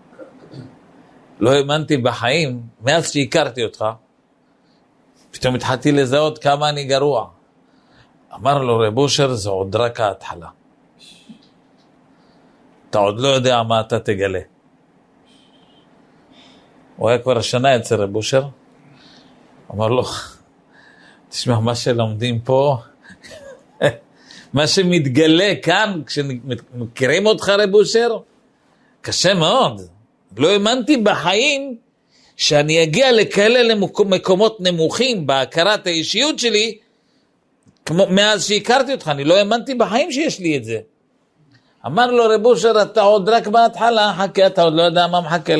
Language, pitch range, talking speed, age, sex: Hebrew, 140-225 Hz, 110 wpm, 50-69, male